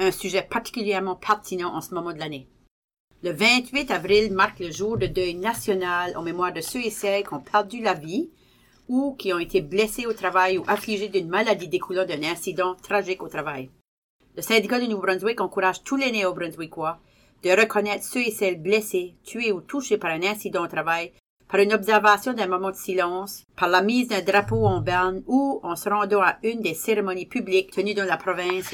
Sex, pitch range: female, 175-210 Hz